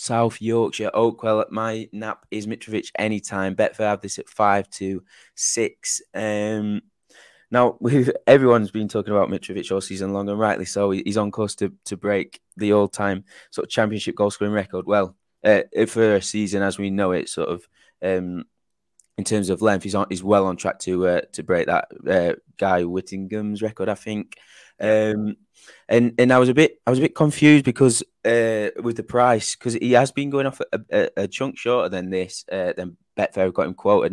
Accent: British